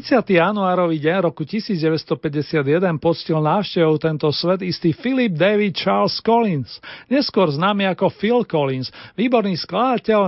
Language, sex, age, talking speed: Slovak, male, 40-59, 125 wpm